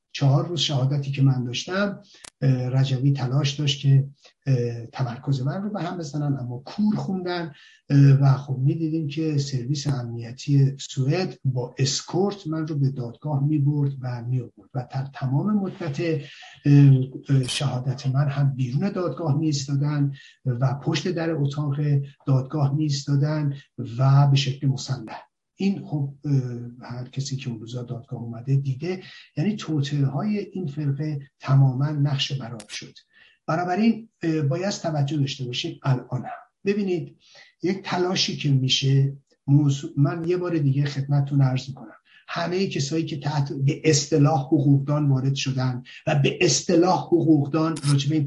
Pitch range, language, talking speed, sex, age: 135-160 Hz, Persian, 130 wpm, male, 50-69